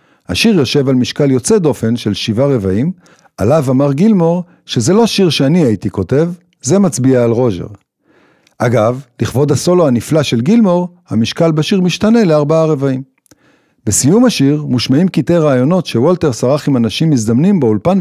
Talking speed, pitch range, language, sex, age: 150 wpm, 120-180 Hz, Hebrew, male, 50-69